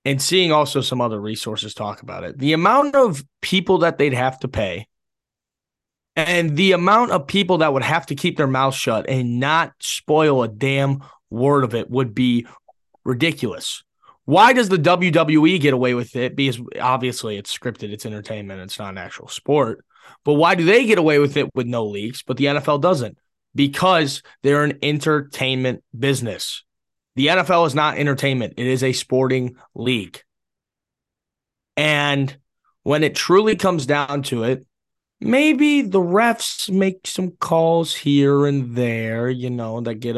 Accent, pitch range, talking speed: American, 125-165 Hz, 165 wpm